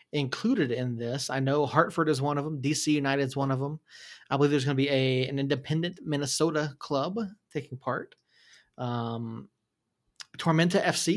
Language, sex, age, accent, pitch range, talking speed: English, male, 30-49, American, 130-160 Hz, 170 wpm